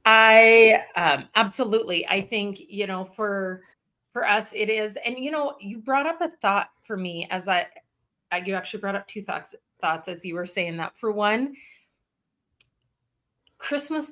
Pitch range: 180-220 Hz